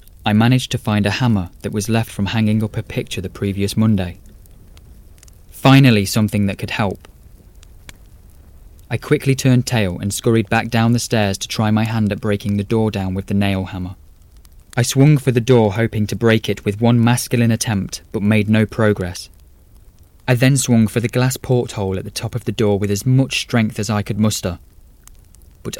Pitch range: 95-115 Hz